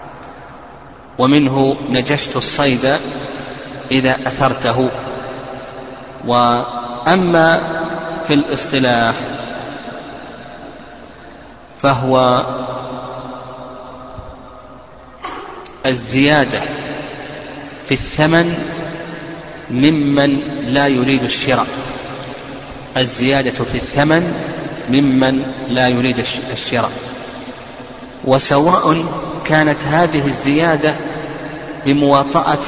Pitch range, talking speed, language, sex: 125-145 Hz, 50 wpm, Arabic, male